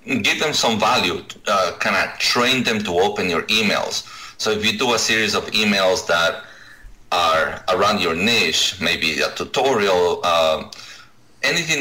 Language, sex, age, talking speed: English, male, 30-49, 160 wpm